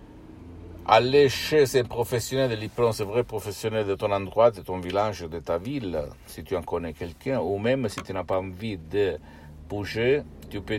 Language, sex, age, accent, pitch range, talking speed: Italian, male, 60-79, native, 80-100 Hz, 190 wpm